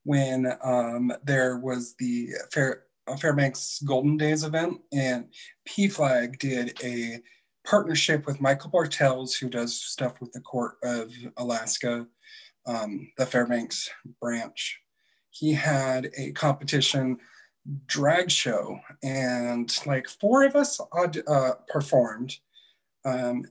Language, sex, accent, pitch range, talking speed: English, male, American, 125-150 Hz, 115 wpm